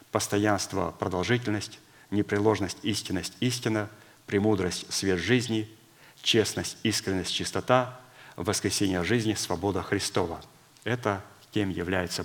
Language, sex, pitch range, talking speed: Russian, male, 95-110 Hz, 90 wpm